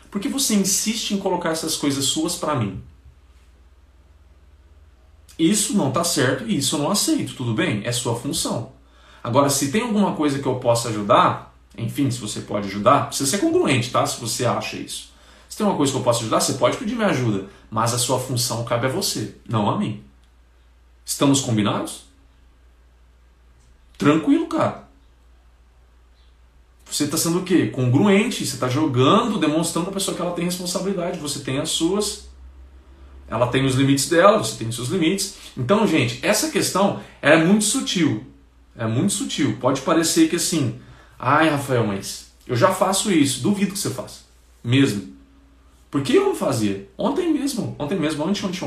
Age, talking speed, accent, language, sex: 40-59, 175 wpm, Brazilian, Portuguese, male